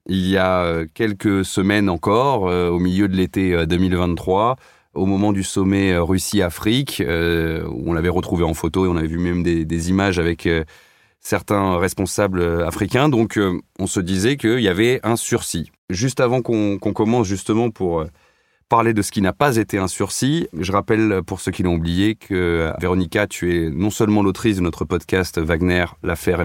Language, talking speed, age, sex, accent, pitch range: French, 175 wpm, 30-49, male, French, 85-105 Hz